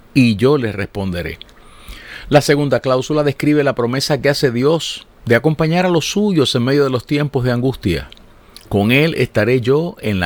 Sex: male